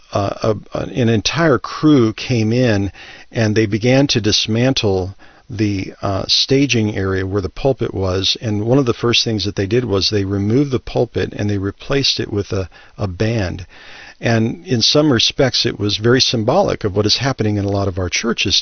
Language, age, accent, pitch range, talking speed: English, 50-69, American, 100-120 Hz, 190 wpm